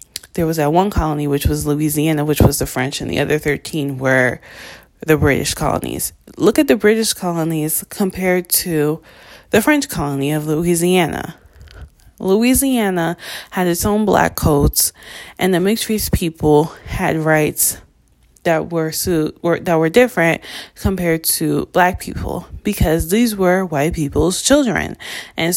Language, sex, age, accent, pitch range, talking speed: English, female, 20-39, American, 150-185 Hz, 145 wpm